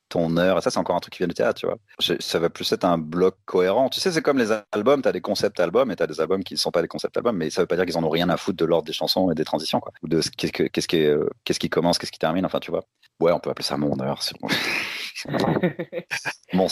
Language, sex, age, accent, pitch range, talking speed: French, male, 30-49, French, 85-115 Hz, 310 wpm